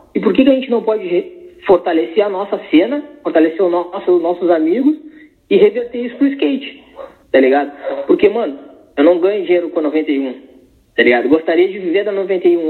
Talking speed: 200 wpm